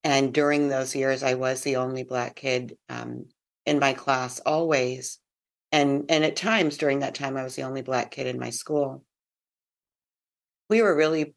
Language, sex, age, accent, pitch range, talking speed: English, female, 40-59, American, 120-145 Hz, 180 wpm